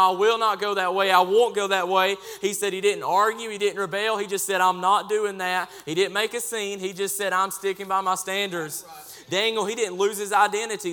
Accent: American